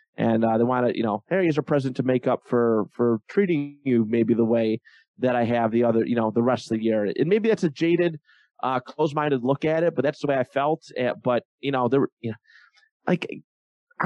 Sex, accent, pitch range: male, American, 120-155 Hz